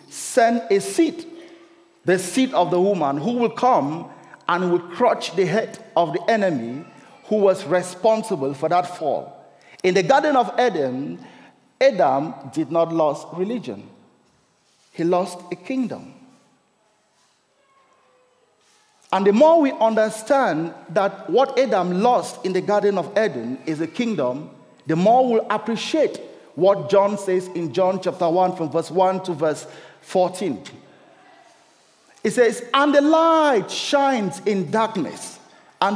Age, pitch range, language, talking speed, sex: 50-69, 180-260 Hz, English, 140 wpm, male